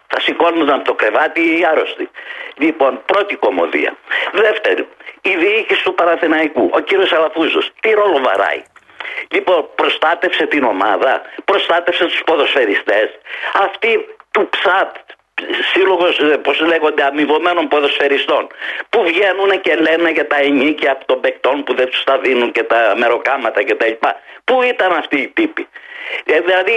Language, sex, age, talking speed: Greek, male, 50-69, 135 wpm